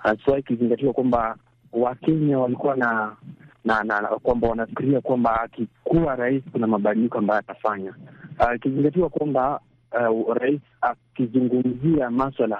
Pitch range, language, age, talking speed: 110-125 Hz, Swahili, 30-49, 130 wpm